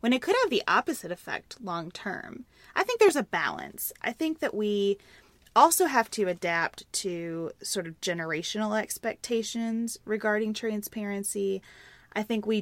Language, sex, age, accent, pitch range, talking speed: English, female, 20-39, American, 175-215 Hz, 145 wpm